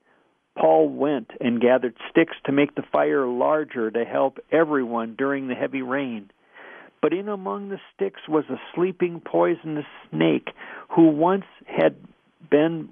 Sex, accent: male, American